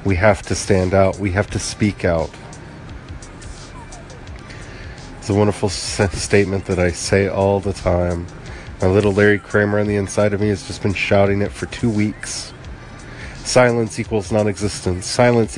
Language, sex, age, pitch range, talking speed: English, male, 40-59, 90-110 Hz, 170 wpm